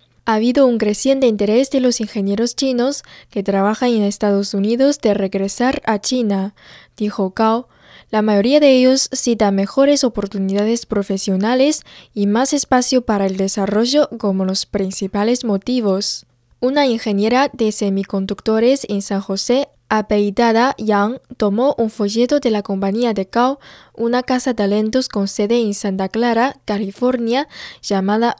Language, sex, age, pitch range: Chinese, female, 10-29, 200-250 Hz